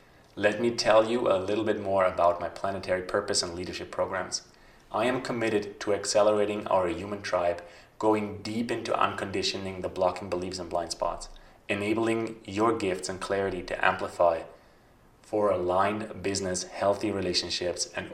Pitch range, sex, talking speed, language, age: 90-110 Hz, male, 150 wpm, English, 20-39